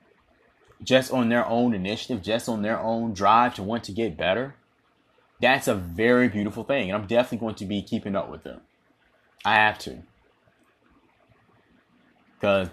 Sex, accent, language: male, American, English